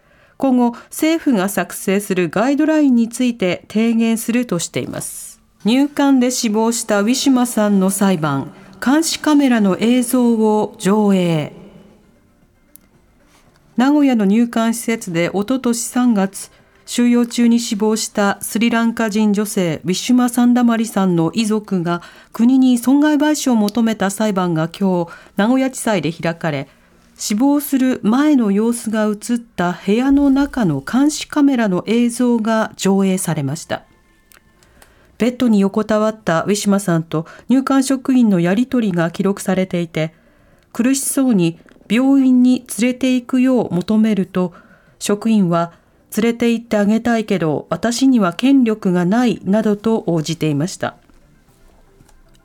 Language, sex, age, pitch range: Japanese, female, 40-59, 190-250 Hz